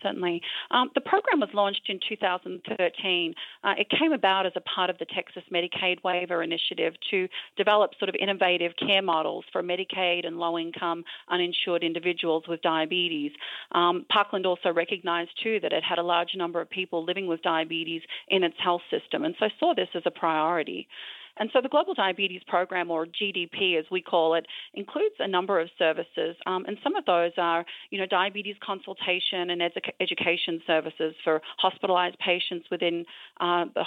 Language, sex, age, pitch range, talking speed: English, female, 40-59, 165-190 Hz, 175 wpm